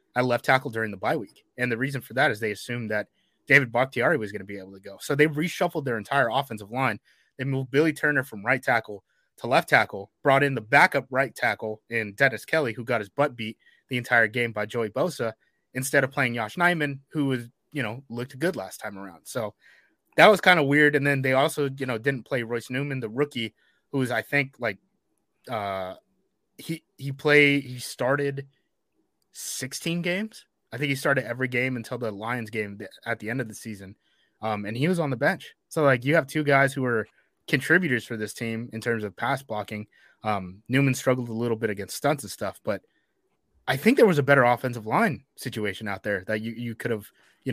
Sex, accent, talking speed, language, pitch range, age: male, American, 220 wpm, English, 110-140 Hz, 20-39